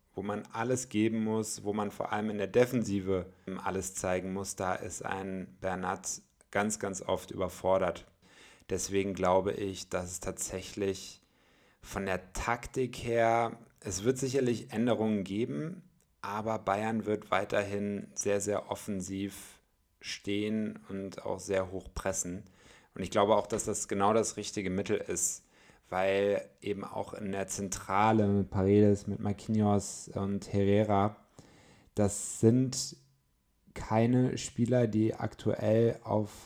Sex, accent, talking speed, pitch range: male, German, 135 wpm, 95-110 Hz